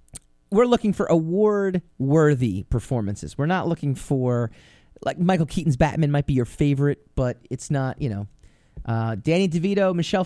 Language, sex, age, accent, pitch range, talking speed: English, male, 40-59, American, 130-215 Hz, 150 wpm